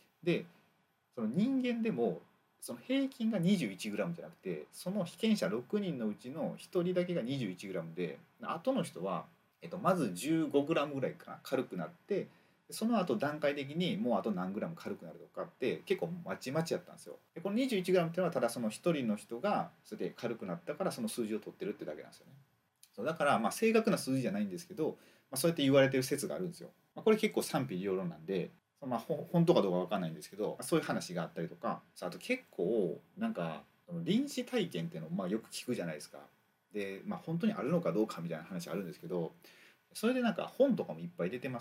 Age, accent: 40-59, native